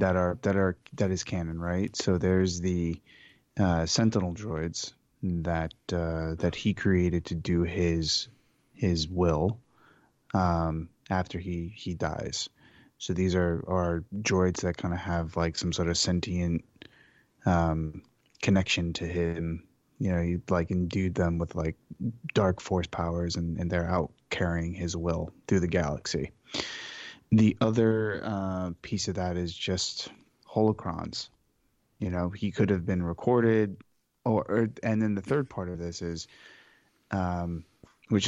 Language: English